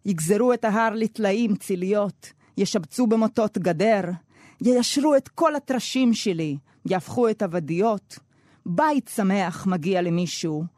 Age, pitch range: 30-49, 170-225 Hz